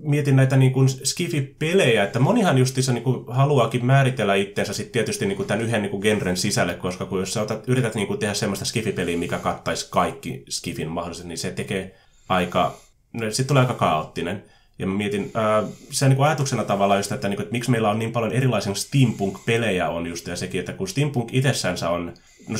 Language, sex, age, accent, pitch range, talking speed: Finnish, male, 30-49, native, 95-130 Hz, 205 wpm